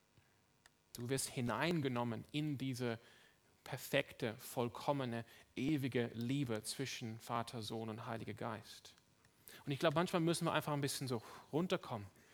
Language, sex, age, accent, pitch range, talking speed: German, male, 30-49, German, 120-155 Hz, 125 wpm